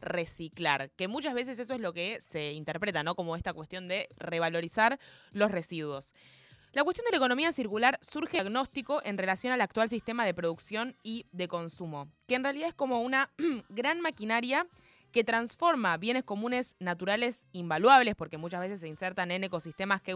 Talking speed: 175 wpm